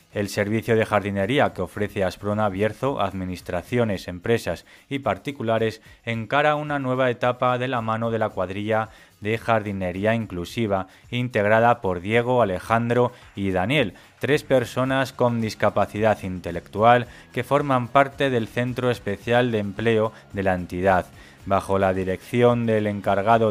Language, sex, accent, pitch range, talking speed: Spanish, male, Spanish, 100-120 Hz, 135 wpm